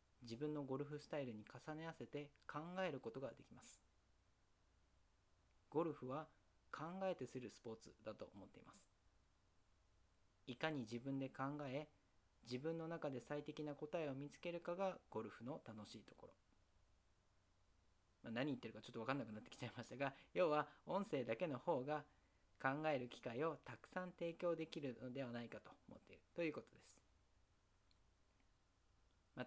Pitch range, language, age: 95-140 Hz, Japanese, 40-59